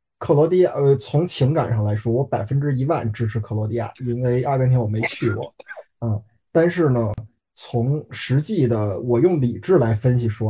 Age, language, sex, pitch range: 20-39, Chinese, male, 115-150 Hz